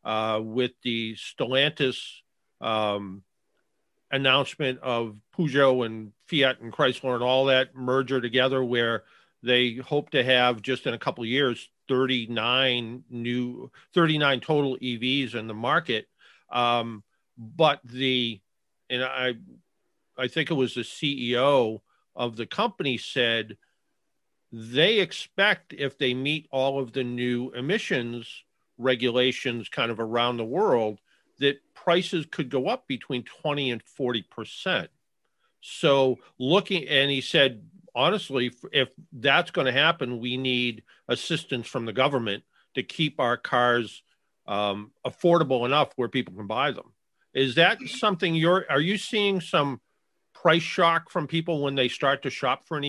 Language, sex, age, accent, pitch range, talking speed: English, male, 50-69, American, 120-145 Hz, 140 wpm